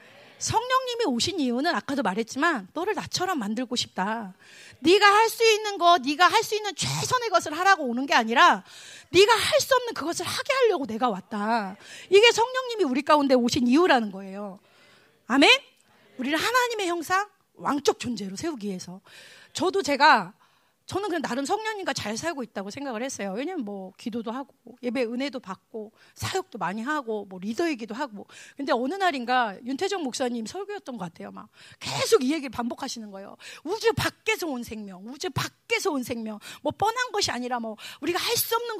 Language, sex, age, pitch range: Korean, female, 30-49, 230-380 Hz